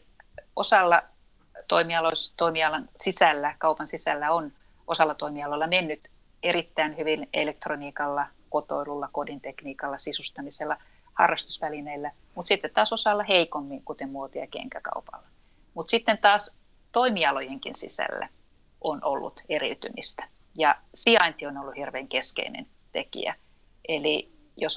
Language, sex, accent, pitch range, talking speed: Finnish, female, native, 145-170 Hz, 100 wpm